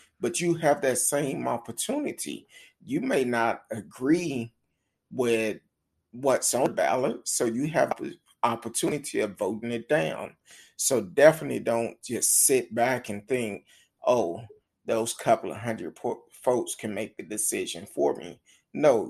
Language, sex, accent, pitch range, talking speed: English, male, American, 120-160 Hz, 145 wpm